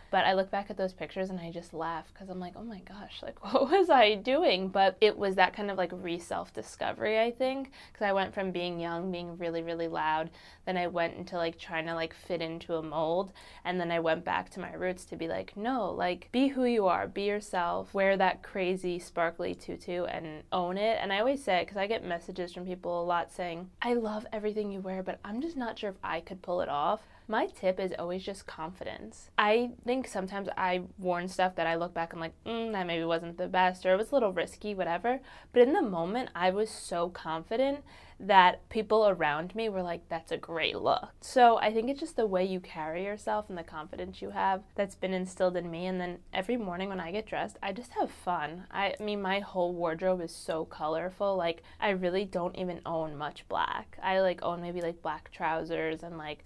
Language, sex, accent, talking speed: English, female, American, 235 wpm